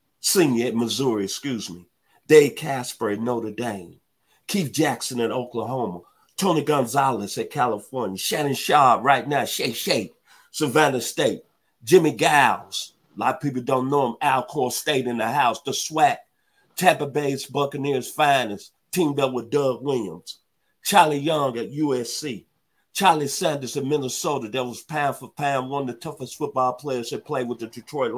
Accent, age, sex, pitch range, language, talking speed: American, 50-69, male, 120-150 Hz, English, 160 wpm